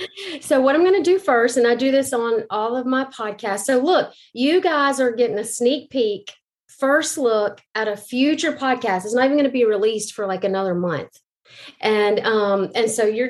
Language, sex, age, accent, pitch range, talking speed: English, female, 40-59, American, 200-240 Hz, 210 wpm